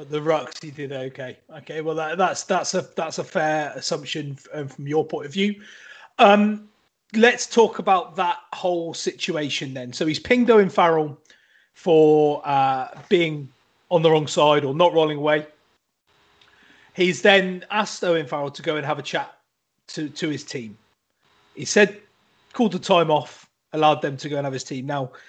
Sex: male